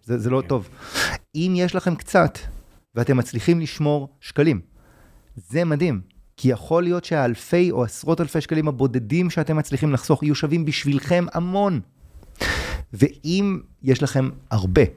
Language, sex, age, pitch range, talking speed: Hebrew, male, 30-49, 115-150 Hz, 135 wpm